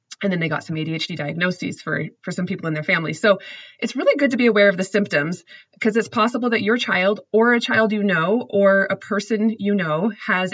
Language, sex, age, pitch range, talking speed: English, female, 20-39, 175-215 Hz, 235 wpm